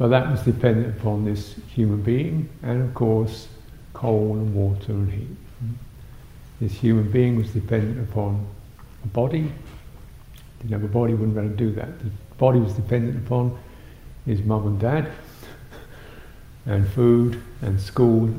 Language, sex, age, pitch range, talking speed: English, male, 60-79, 105-125 Hz, 145 wpm